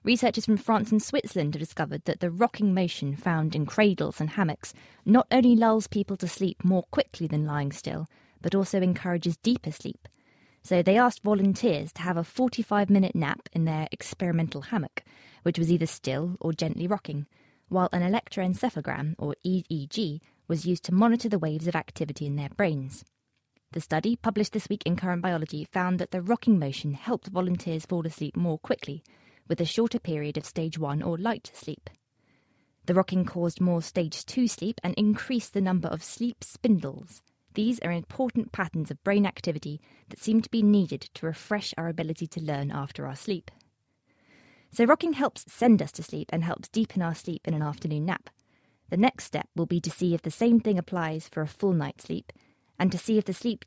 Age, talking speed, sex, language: 20-39, 190 wpm, female, English